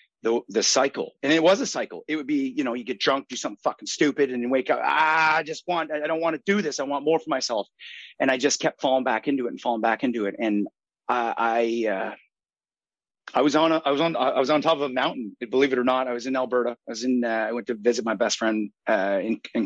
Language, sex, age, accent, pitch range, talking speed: English, male, 30-49, American, 110-145 Hz, 275 wpm